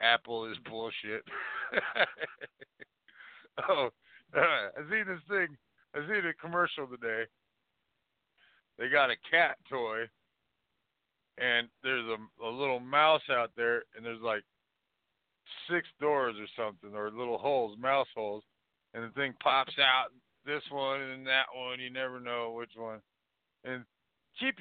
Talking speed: 135 wpm